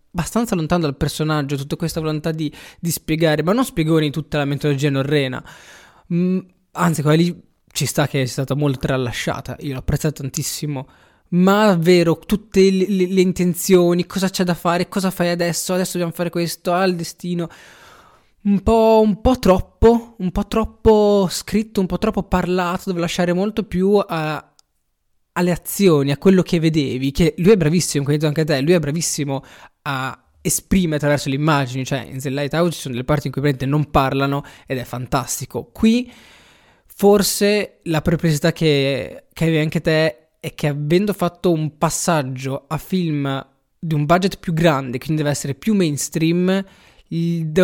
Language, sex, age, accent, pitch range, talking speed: Italian, male, 20-39, native, 145-180 Hz, 175 wpm